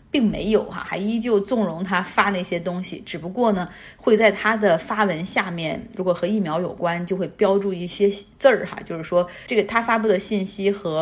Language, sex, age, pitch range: Chinese, female, 30-49, 185-220 Hz